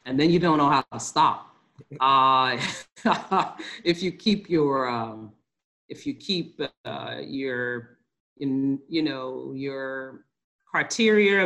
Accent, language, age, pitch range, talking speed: American, English, 40-59, 125-150 Hz, 75 wpm